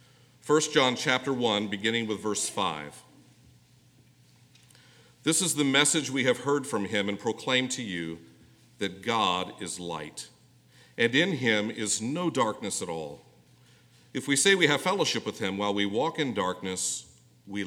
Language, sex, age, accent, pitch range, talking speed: English, male, 50-69, American, 90-130 Hz, 160 wpm